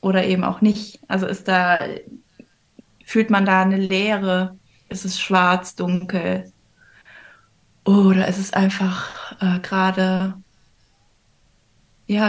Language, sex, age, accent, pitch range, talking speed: German, female, 20-39, German, 185-210 Hz, 110 wpm